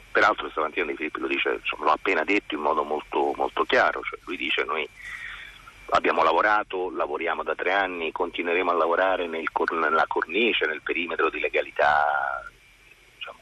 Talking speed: 160 wpm